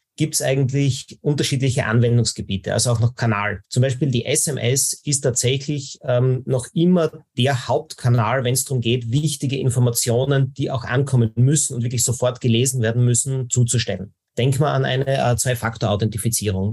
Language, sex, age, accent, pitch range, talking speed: German, male, 30-49, Austrian, 115-135 Hz, 155 wpm